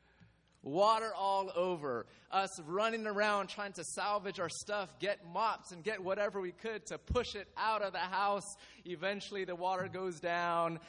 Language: English